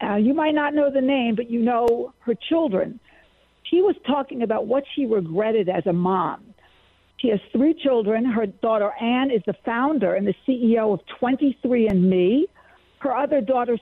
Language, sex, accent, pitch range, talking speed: English, female, American, 210-285 Hz, 175 wpm